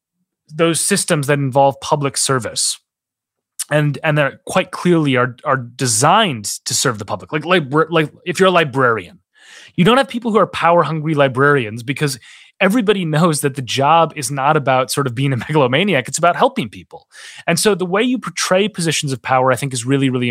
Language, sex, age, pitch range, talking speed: English, male, 30-49, 130-165 Hz, 200 wpm